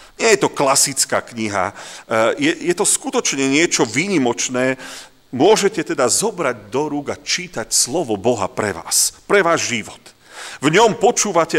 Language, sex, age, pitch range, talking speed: Slovak, male, 40-59, 120-175 Hz, 145 wpm